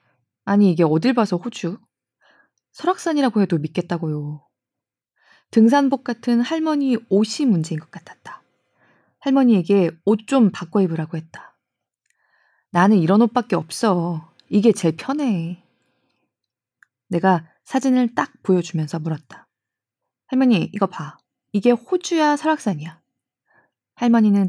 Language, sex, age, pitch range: Korean, female, 20-39, 160-230 Hz